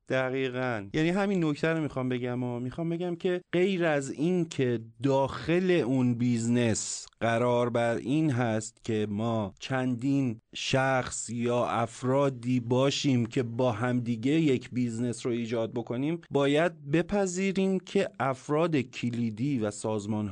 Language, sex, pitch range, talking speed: Persian, male, 120-160 Hz, 130 wpm